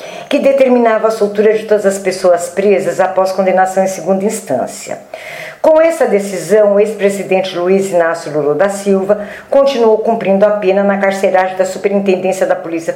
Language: Portuguese